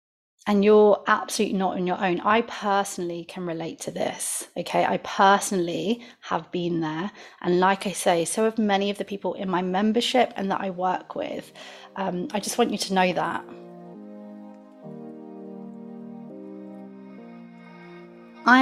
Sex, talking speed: female, 150 wpm